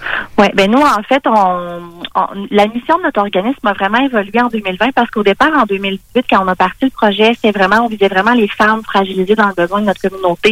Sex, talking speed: female, 240 wpm